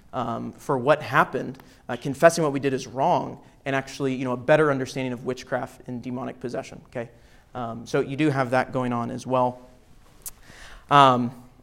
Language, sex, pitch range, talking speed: English, male, 130-155 Hz, 180 wpm